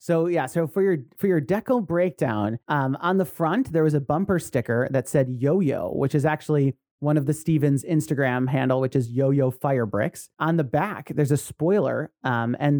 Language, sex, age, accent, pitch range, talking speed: English, male, 30-49, American, 135-165 Hz, 195 wpm